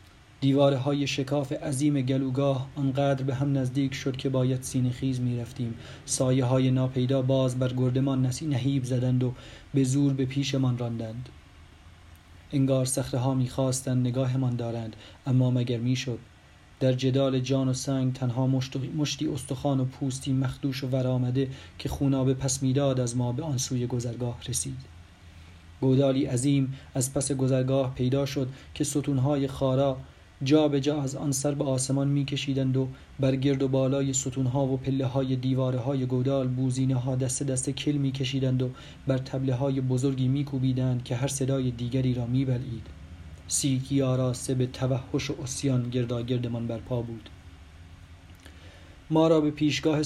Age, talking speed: 30-49, 150 wpm